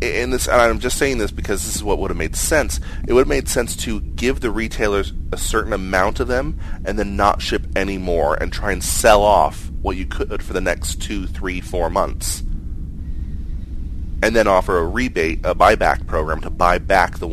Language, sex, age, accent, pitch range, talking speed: English, male, 30-49, American, 75-90 Hz, 215 wpm